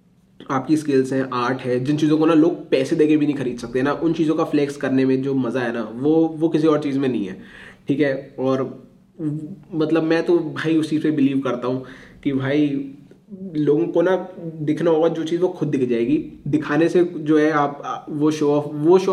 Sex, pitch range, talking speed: male, 135-160 Hz, 220 wpm